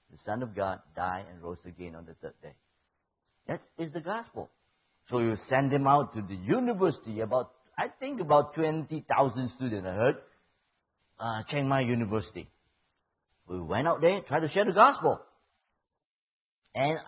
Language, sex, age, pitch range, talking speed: English, male, 50-69, 95-155 Hz, 165 wpm